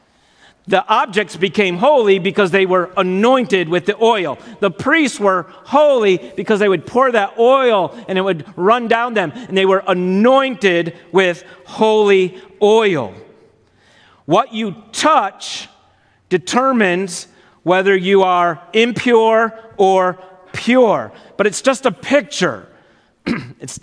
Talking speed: 125 wpm